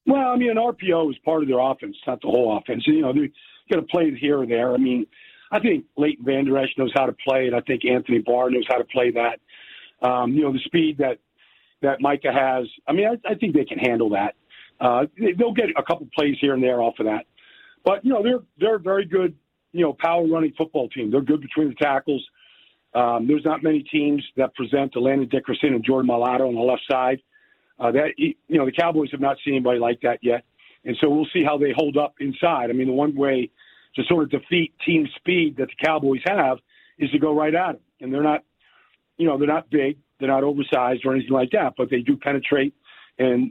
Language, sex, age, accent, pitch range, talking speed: English, male, 50-69, American, 130-160 Hz, 240 wpm